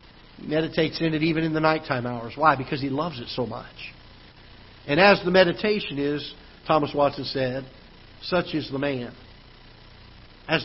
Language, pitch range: English, 130-175 Hz